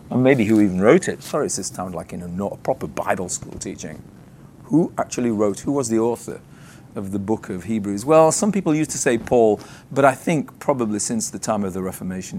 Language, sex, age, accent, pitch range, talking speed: English, male, 40-59, British, 100-140 Hz, 220 wpm